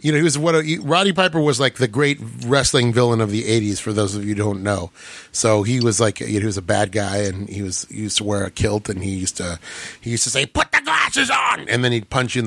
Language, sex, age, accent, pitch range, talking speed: English, male, 30-49, American, 105-140 Hz, 305 wpm